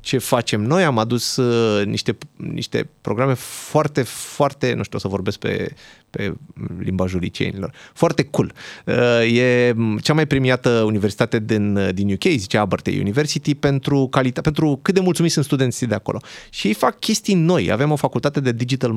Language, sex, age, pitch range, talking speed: Romanian, male, 30-49, 115-165 Hz, 165 wpm